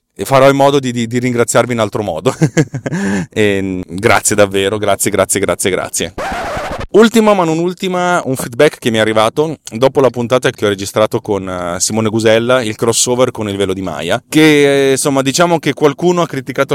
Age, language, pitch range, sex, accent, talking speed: 30-49, Italian, 100-130 Hz, male, native, 180 wpm